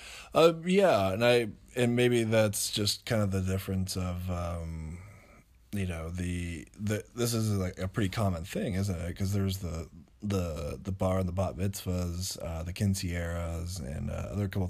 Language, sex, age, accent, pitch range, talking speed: English, male, 20-39, American, 90-100 Hz, 180 wpm